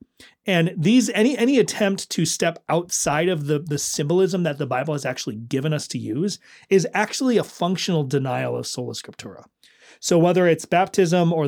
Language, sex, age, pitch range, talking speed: English, male, 30-49, 140-180 Hz, 180 wpm